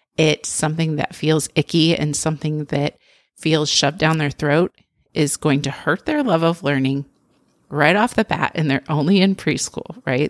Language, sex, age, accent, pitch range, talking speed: English, female, 30-49, American, 150-195 Hz, 180 wpm